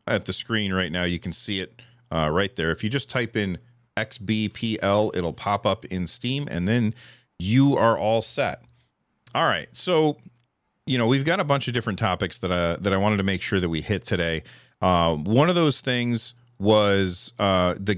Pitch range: 95-120 Hz